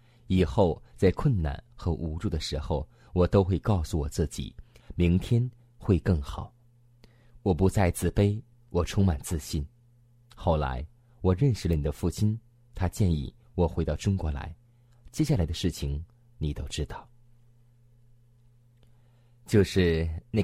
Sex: male